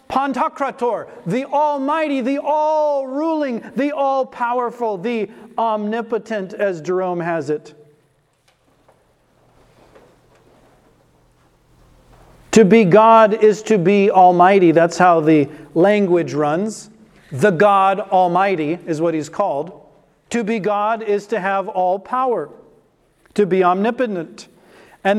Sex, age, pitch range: male, 40-59, 195-260 Hz